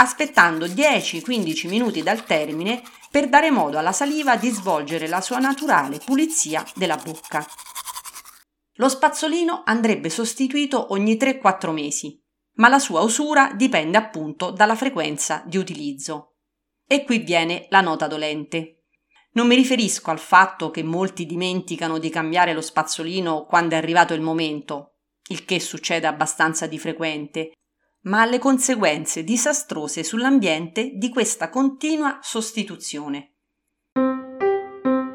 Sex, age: female, 40-59